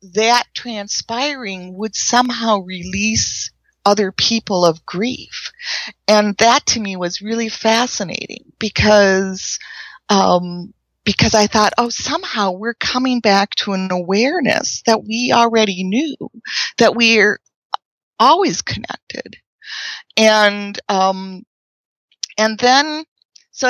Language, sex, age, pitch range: English, female, 40-59, 185-230 Hz